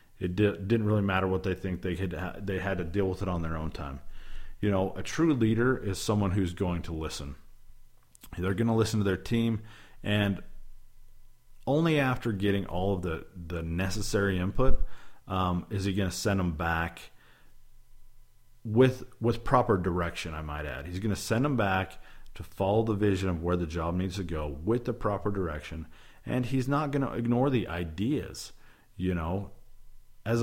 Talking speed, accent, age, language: 190 wpm, American, 40-59, English